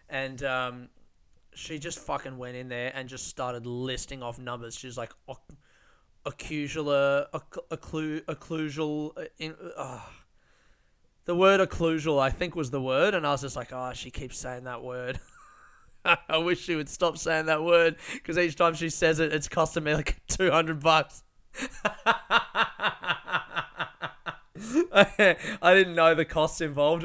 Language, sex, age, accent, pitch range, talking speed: English, male, 20-39, Australian, 125-155 Hz, 155 wpm